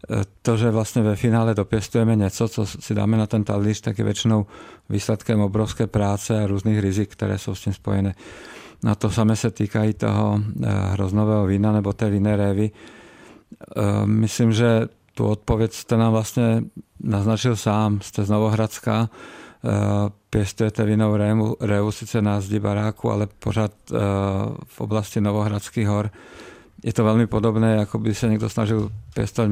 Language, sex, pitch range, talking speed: Czech, male, 100-110 Hz, 140 wpm